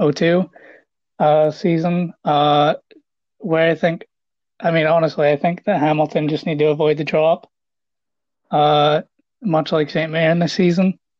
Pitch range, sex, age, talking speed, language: 150-165 Hz, male, 20-39, 155 wpm, English